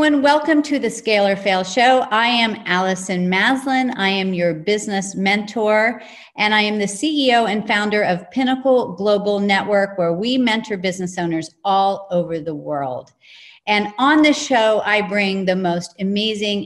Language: English